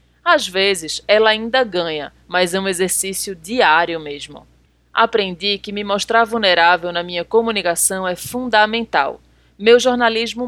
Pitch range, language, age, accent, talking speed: 185-230 Hz, Portuguese, 20-39, Brazilian, 130 wpm